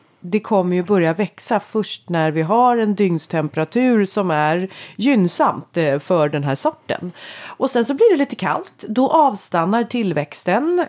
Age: 30-49